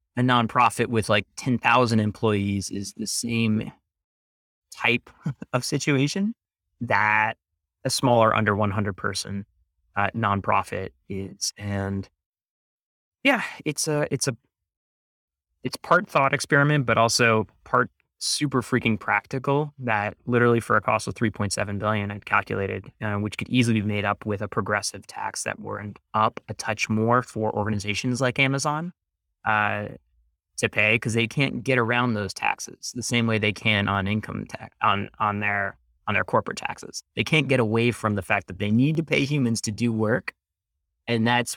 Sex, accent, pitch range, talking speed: male, American, 100-120 Hz, 160 wpm